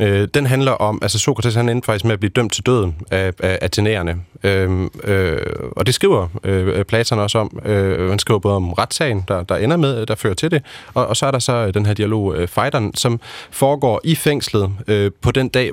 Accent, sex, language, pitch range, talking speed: native, male, Danish, 100-130 Hz, 225 wpm